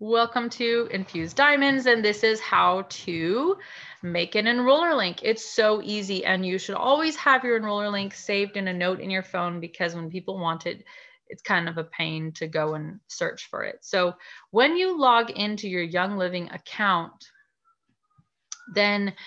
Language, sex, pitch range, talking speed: English, female, 175-235 Hz, 180 wpm